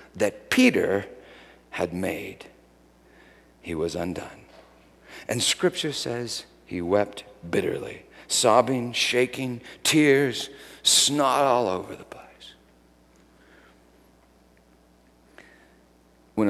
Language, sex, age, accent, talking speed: English, male, 50-69, American, 80 wpm